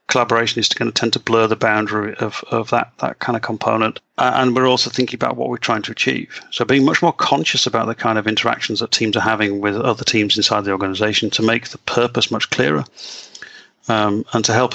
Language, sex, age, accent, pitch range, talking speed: English, male, 40-59, British, 105-120 Hz, 235 wpm